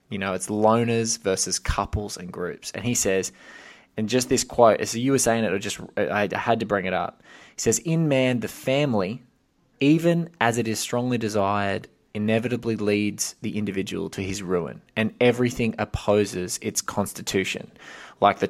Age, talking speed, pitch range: 20-39, 175 wpm, 100-120 Hz